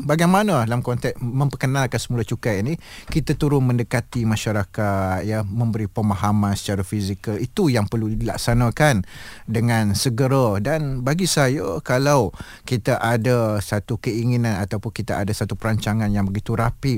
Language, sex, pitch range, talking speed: Malay, male, 110-140 Hz, 135 wpm